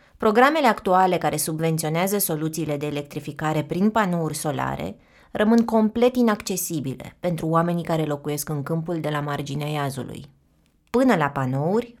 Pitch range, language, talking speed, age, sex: 145-190 Hz, Romanian, 130 wpm, 20-39, female